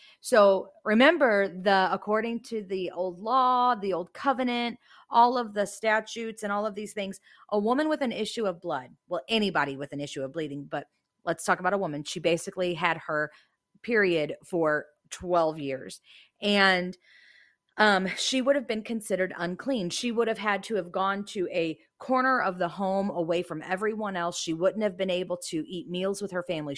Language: English